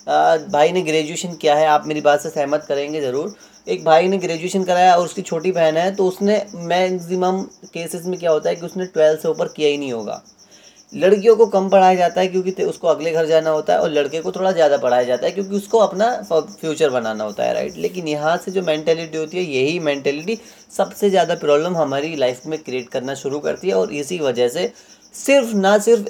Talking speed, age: 220 wpm, 30-49